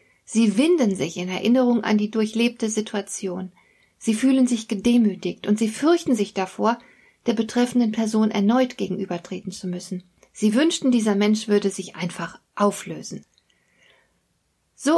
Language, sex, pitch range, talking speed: German, female, 200-250 Hz, 135 wpm